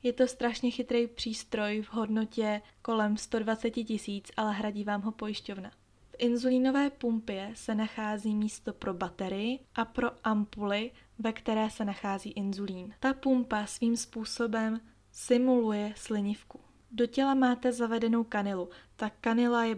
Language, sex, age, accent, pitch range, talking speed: Czech, female, 20-39, native, 205-235 Hz, 135 wpm